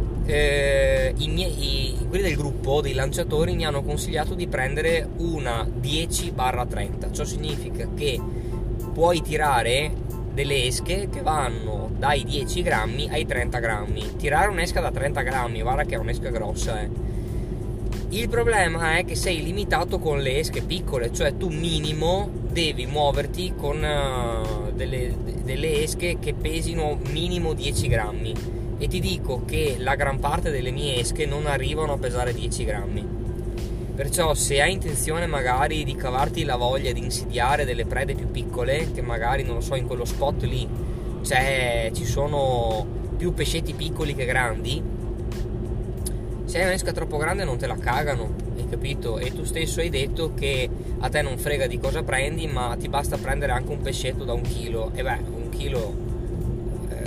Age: 20-39